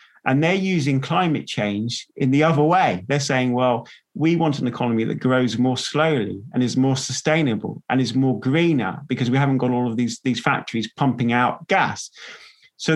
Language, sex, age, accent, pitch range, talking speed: English, male, 30-49, British, 120-150 Hz, 190 wpm